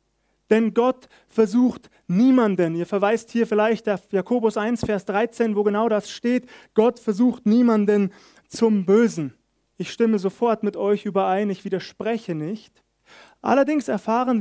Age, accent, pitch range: 30-49, German, 195-240 Hz